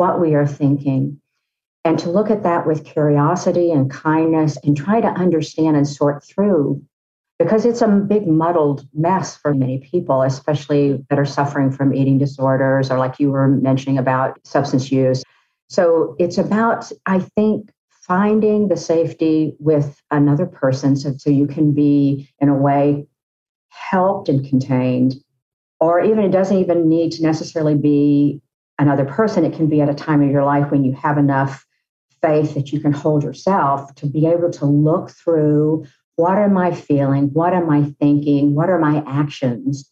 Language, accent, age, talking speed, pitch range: English, American, 50-69, 170 wpm, 135-165 Hz